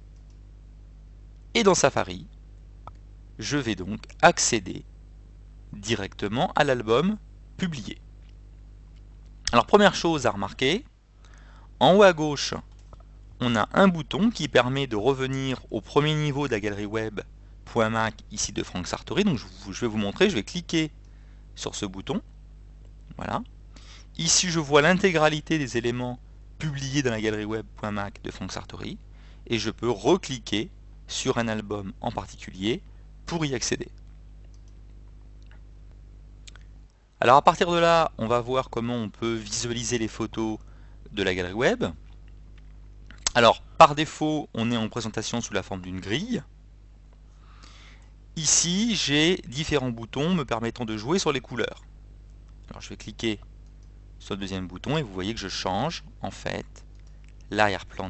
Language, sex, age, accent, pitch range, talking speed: French, male, 30-49, French, 105-135 Hz, 140 wpm